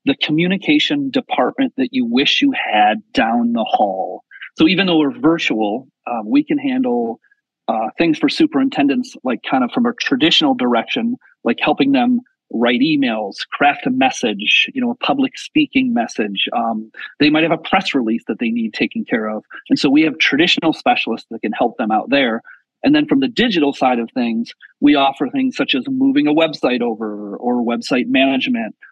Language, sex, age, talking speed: English, male, 40-59, 185 wpm